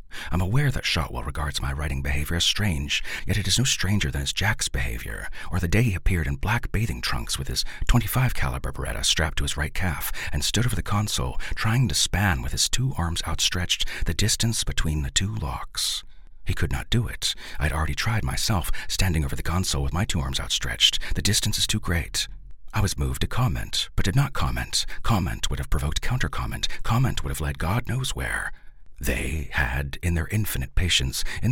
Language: English